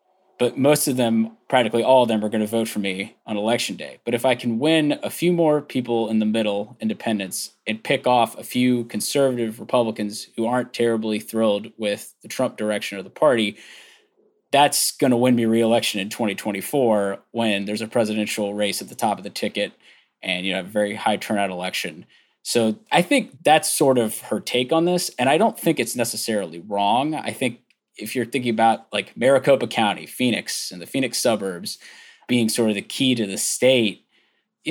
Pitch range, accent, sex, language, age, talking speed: 105-125 Hz, American, male, English, 20-39, 200 wpm